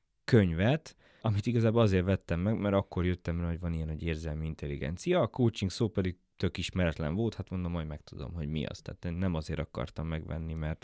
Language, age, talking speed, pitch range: Hungarian, 20-39, 205 wpm, 85-115 Hz